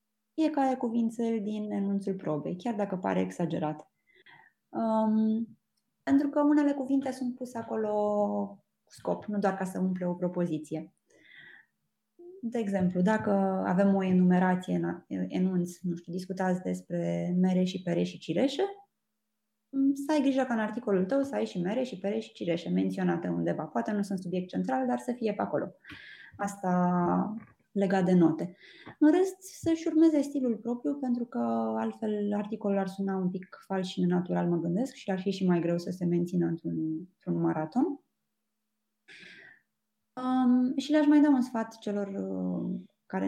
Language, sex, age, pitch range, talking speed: Romanian, female, 20-39, 175-235 Hz, 160 wpm